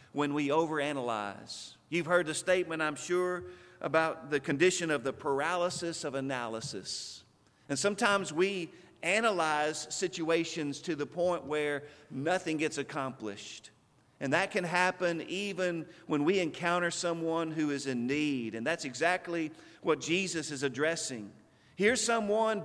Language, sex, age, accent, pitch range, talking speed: English, male, 50-69, American, 140-185 Hz, 135 wpm